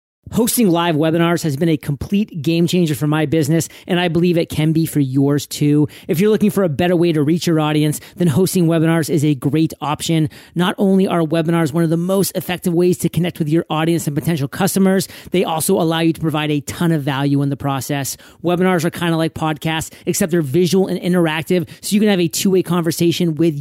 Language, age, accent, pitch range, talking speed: English, 30-49, American, 150-175 Hz, 225 wpm